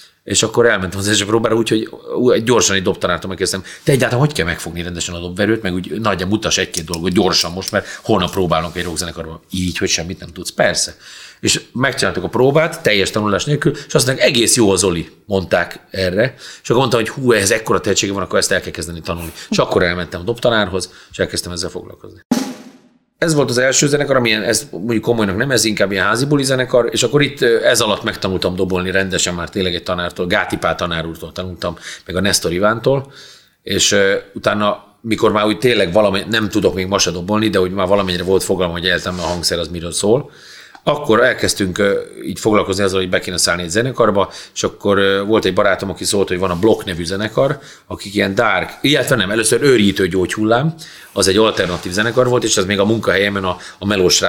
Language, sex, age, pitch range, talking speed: Hungarian, male, 30-49, 90-120 Hz, 200 wpm